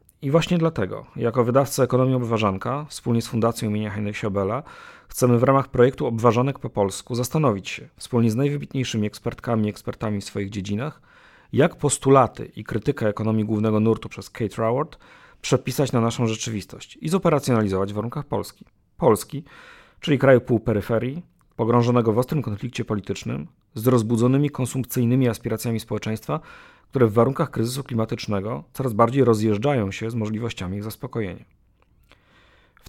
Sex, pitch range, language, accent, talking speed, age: male, 110-130 Hz, Polish, native, 145 wpm, 40-59